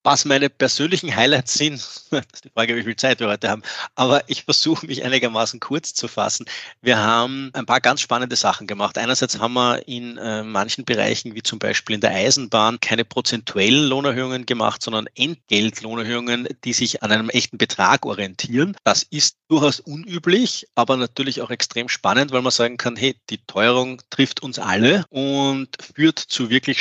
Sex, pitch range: male, 115-135 Hz